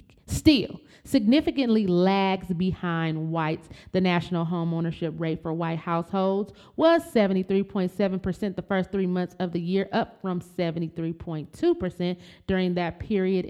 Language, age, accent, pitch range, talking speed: English, 30-49, American, 165-195 Hz, 125 wpm